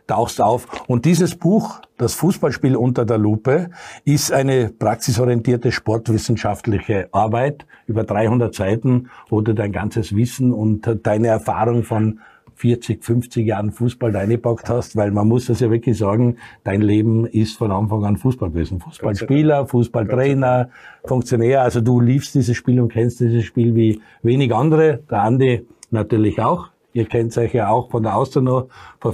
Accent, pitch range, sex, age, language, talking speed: Austrian, 105-125 Hz, male, 50-69, German, 155 wpm